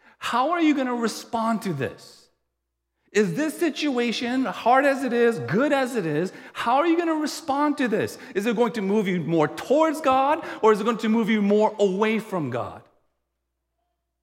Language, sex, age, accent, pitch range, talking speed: English, male, 40-59, American, 165-250 Hz, 190 wpm